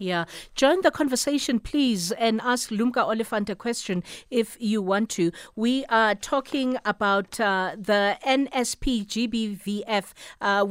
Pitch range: 195-240 Hz